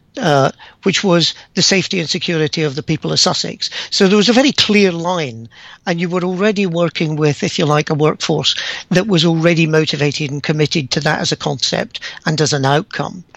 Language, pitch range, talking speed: English, 150-185 Hz, 200 wpm